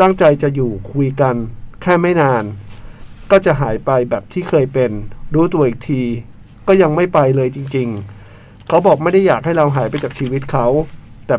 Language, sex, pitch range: Thai, male, 115-160 Hz